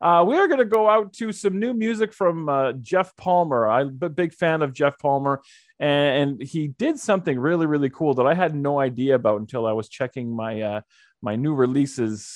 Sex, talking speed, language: male, 220 wpm, English